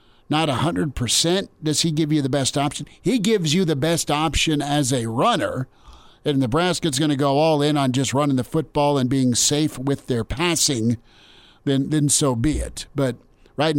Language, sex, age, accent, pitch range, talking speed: English, male, 50-69, American, 130-155 Hz, 195 wpm